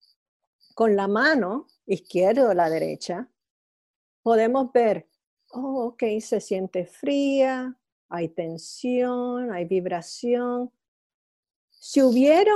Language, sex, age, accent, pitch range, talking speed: English, female, 50-69, American, 205-270 Hz, 95 wpm